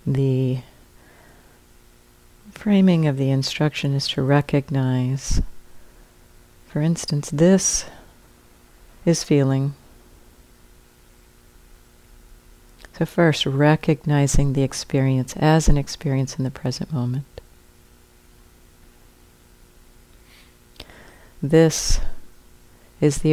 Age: 50-69